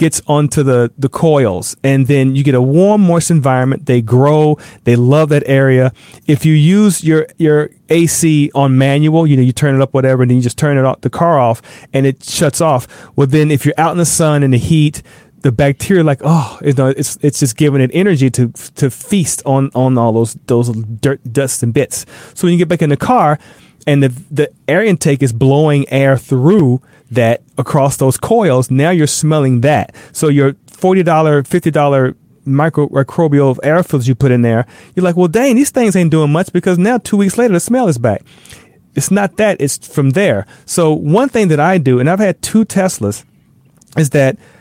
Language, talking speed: English, 210 wpm